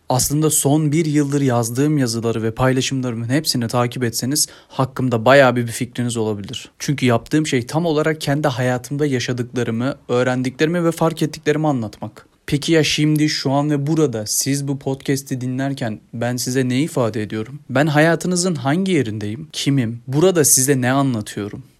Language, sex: Turkish, male